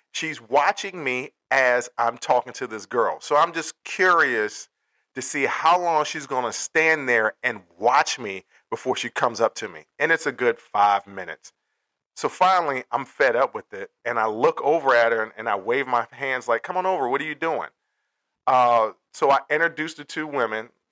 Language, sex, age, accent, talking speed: English, male, 40-59, American, 200 wpm